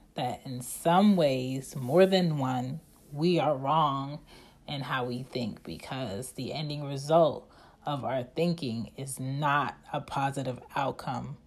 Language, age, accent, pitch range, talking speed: English, 30-49, American, 130-155 Hz, 135 wpm